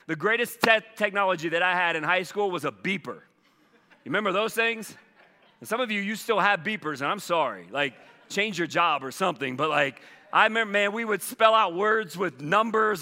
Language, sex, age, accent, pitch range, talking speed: English, male, 40-59, American, 160-205 Hz, 210 wpm